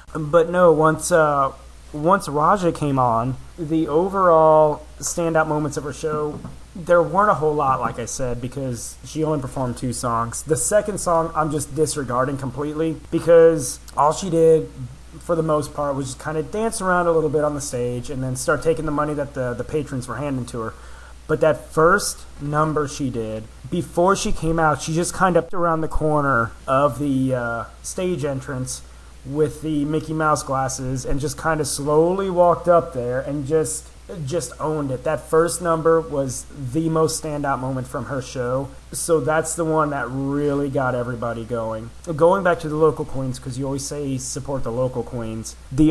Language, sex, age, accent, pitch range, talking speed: English, male, 30-49, American, 130-160 Hz, 190 wpm